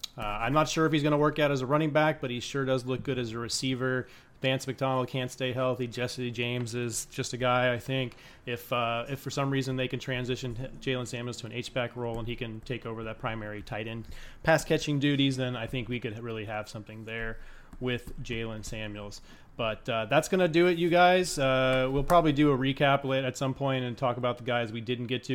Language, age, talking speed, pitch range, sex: English, 30-49, 240 wpm, 120-140 Hz, male